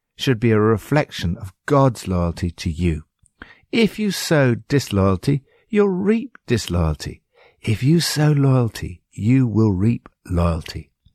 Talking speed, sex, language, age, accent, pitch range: 130 wpm, male, English, 60-79, British, 90-135 Hz